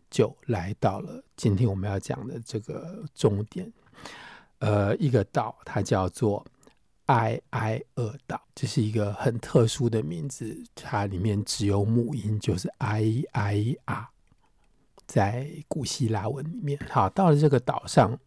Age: 50-69